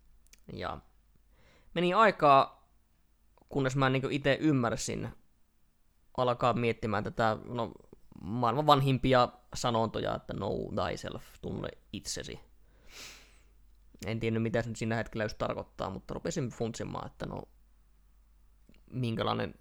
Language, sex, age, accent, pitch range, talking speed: Finnish, male, 20-39, native, 105-135 Hz, 105 wpm